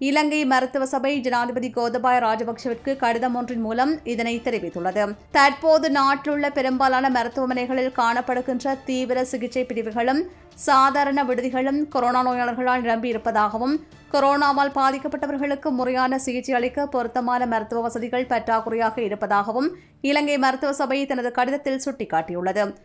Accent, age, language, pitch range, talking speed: Indian, 20-39, English, 235-275 Hz, 110 wpm